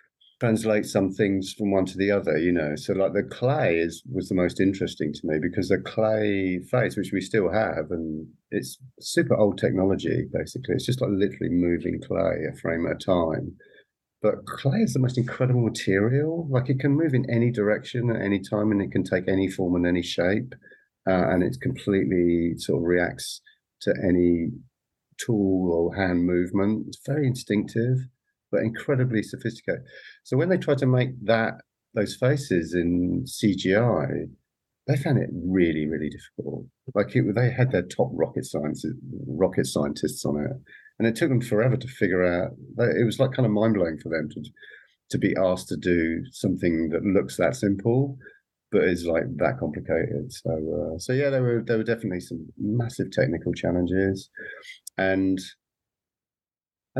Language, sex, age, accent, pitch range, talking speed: English, male, 50-69, British, 90-125 Hz, 175 wpm